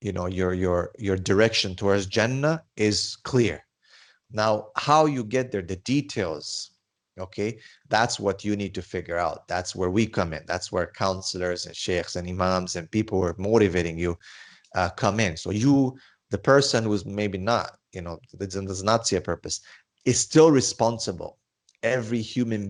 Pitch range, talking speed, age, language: 90-115 Hz, 170 wpm, 30-49, English